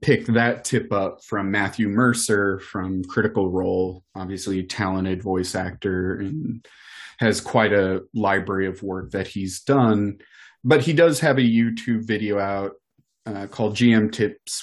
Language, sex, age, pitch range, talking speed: English, male, 30-49, 100-115 Hz, 150 wpm